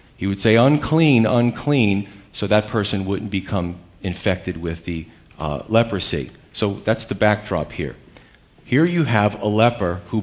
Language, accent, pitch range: English, American, 90-115 Hz